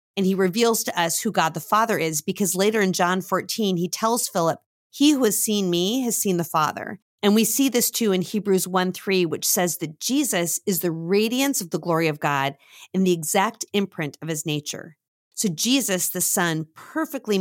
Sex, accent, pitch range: female, American, 170-220 Hz